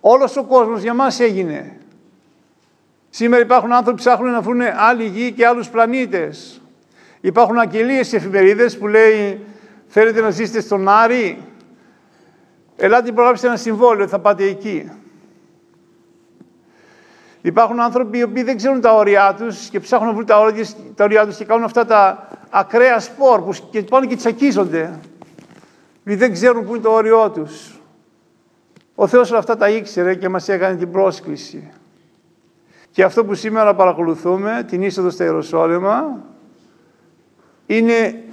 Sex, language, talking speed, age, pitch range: male, Greek, 140 wpm, 50-69, 195-235 Hz